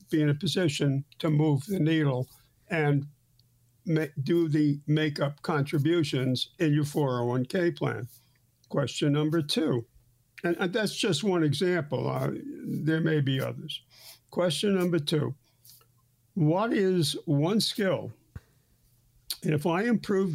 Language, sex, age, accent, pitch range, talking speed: English, male, 60-79, American, 130-175 Hz, 125 wpm